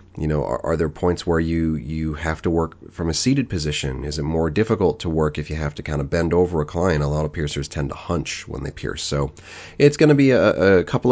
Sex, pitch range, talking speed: male, 75-90 Hz, 270 wpm